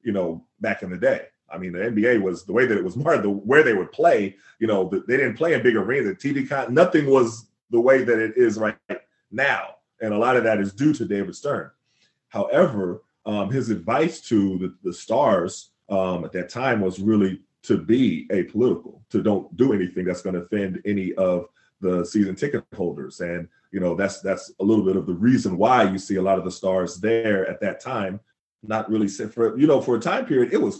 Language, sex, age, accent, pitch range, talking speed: English, male, 30-49, American, 100-135 Hz, 230 wpm